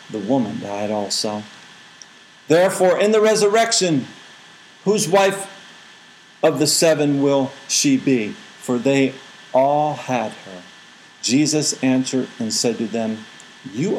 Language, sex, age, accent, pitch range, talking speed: English, male, 50-69, American, 145-195 Hz, 120 wpm